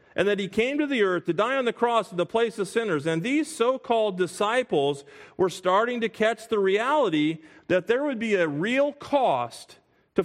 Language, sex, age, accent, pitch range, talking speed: English, male, 40-59, American, 130-180 Hz, 205 wpm